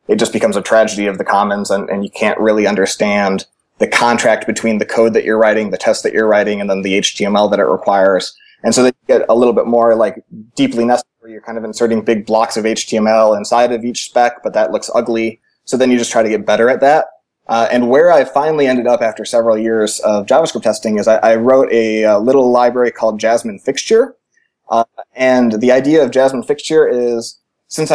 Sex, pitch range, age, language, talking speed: male, 110-130 Hz, 20-39, English, 225 wpm